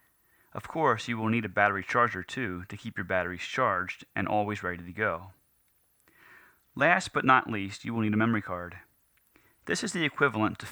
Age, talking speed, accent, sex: 30-49, 190 wpm, American, male